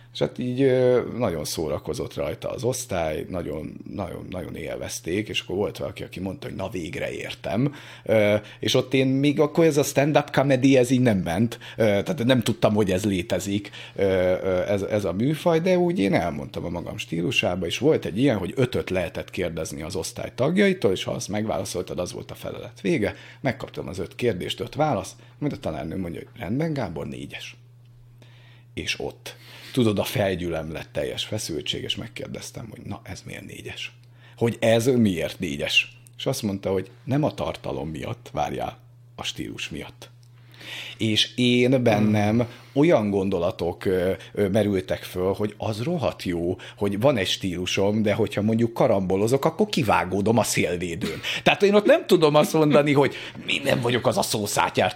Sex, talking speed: male, 170 wpm